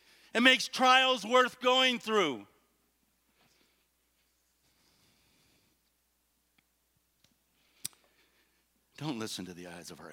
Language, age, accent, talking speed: English, 50-69, American, 75 wpm